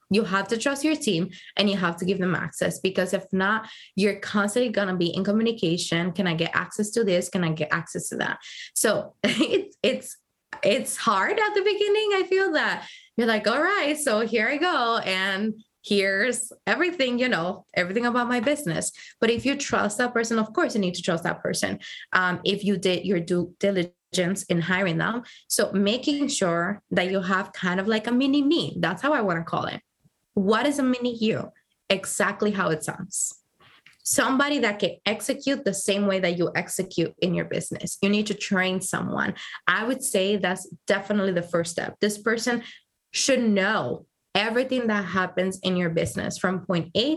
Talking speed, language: 195 wpm, English